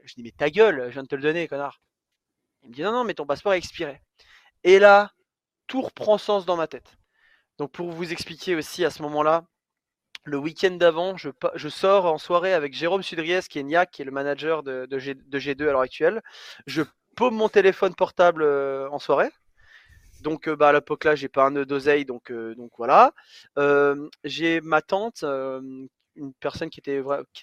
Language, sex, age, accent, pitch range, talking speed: French, male, 20-39, French, 140-175 Hz, 210 wpm